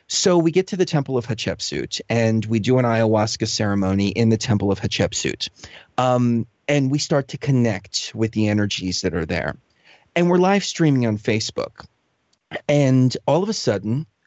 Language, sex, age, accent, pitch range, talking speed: English, male, 30-49, American, 105-140 Hz, 175 wpm